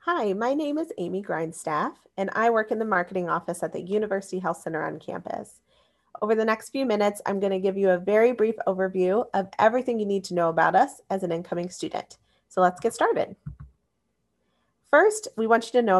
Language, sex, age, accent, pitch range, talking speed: English, female, 30-49, American, 180-225 Hz, 210 wpm